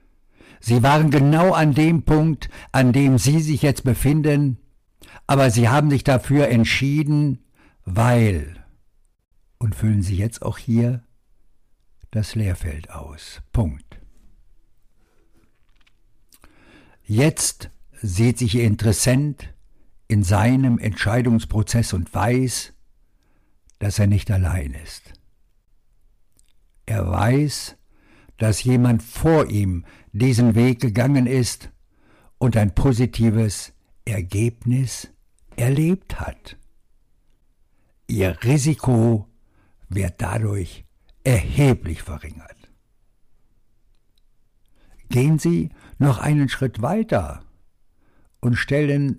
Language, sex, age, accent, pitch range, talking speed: German, male, 60-79, German, 100-130 Hz, 90 wpm